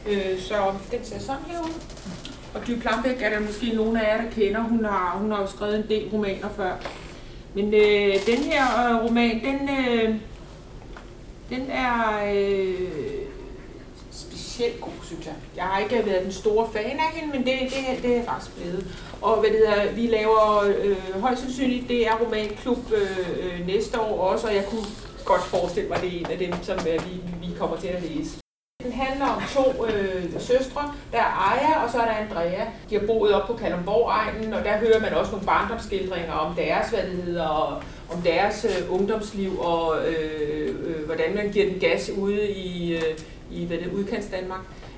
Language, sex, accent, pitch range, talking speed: Danish, female, native, 190-235 Hz, 195 wpm